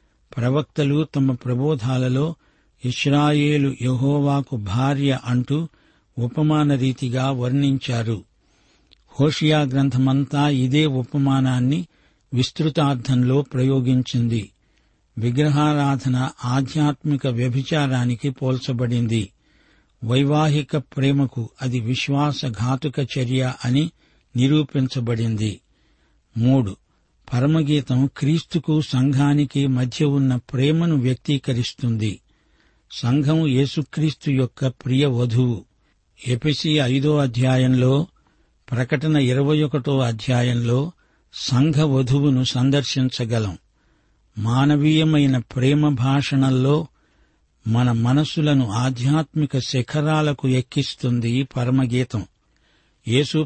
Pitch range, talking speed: 125-145 Hz, 65 wpm